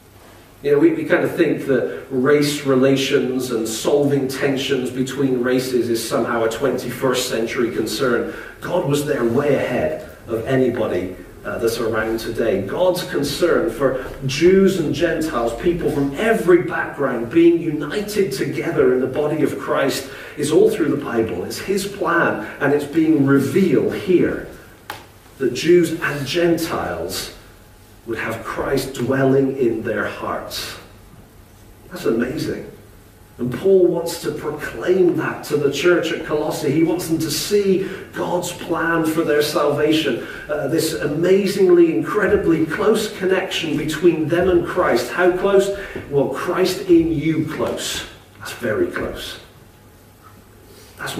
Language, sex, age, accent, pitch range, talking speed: English, male, 40-59, British, 120-175 Hz, 140 wpm